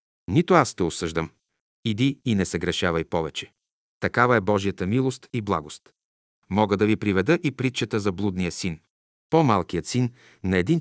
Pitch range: 95-120 Hz